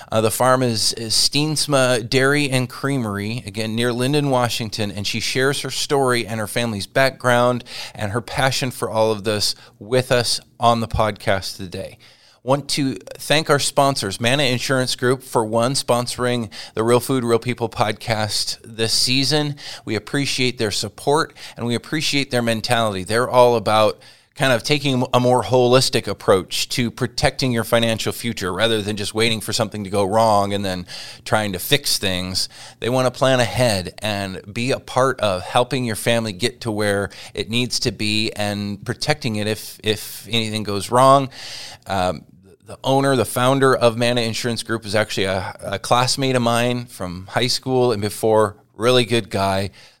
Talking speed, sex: 175 wpm, male